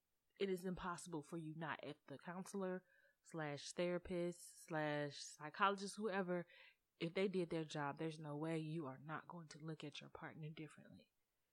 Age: 20-39